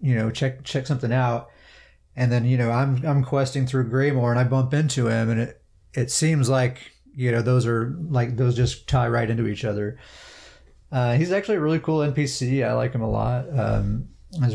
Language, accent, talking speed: English, American, 210 wpm